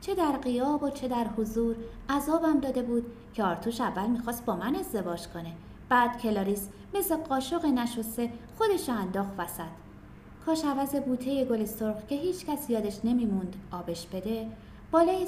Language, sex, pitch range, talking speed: Persian, female, 195-275 Hz, 150 wpm